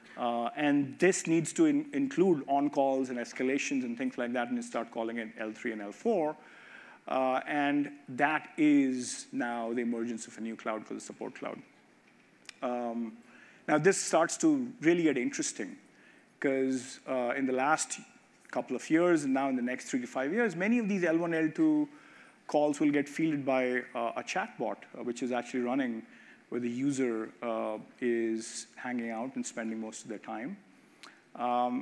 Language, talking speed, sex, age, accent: English, 175 wpm, male, 50-69, Indian